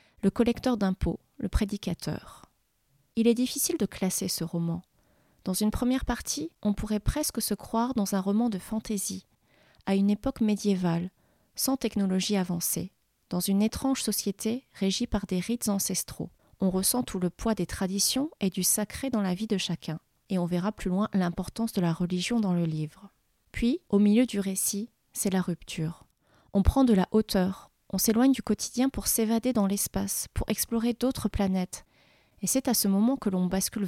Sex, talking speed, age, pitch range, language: female, 180 wpm, 30-49, 180-220 Hz, French